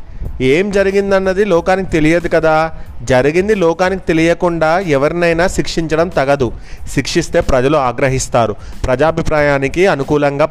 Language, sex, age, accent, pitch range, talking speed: Telugu, male, 30-49, native, 125-165 Hz, 90 wpm